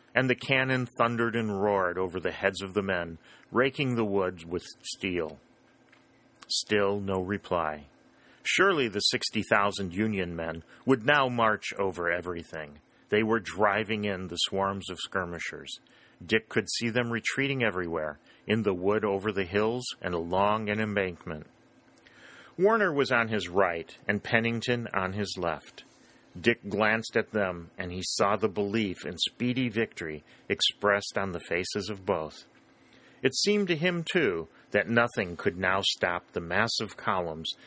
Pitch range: 90-115 Hz